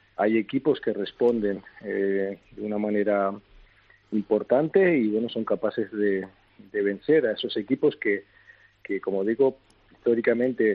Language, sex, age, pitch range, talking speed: Spanish, male, 40-59, 105-120 Hz, 135 wpm